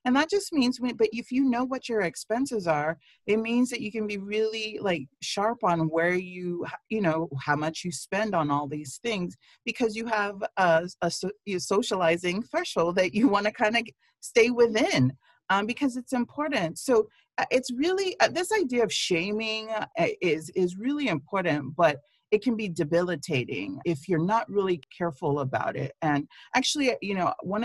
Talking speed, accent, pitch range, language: 180 wpm, American, 140-215 Hz, English